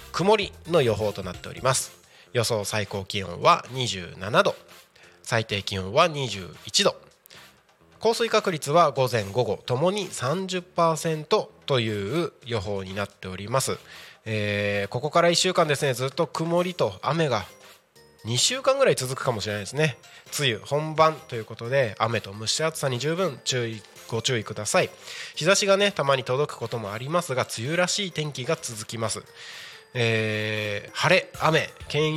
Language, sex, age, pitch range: Japanese, male, 20-39, 110-165 Hz